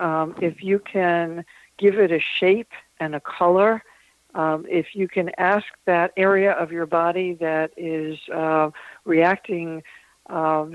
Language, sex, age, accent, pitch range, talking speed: English, female, 60-79, American, 160-185 Hz, 145 wpm